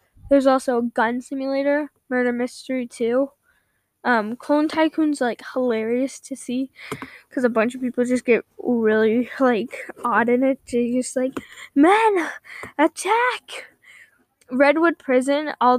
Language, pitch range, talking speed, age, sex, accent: English, 245-285 Hz, 135 wpm, 10-29, female, American